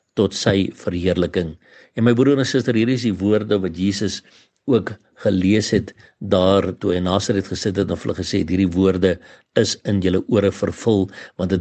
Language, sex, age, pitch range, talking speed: English, male, 60-79, 95-120 Hz, 180 wpm